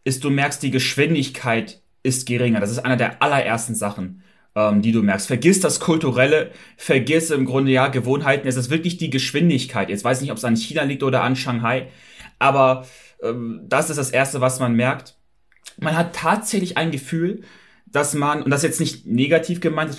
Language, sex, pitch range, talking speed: German, male, 125-155 Hz, 190 wpm